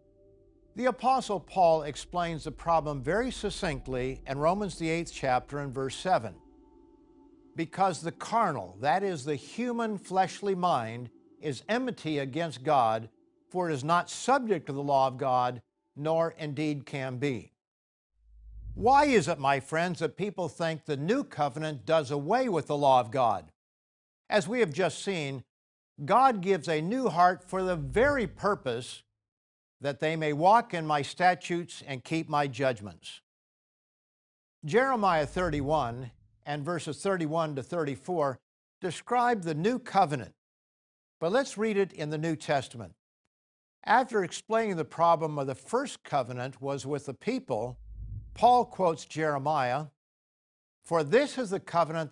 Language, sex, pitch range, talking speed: English, male, 135-190 Hz, 145 wpm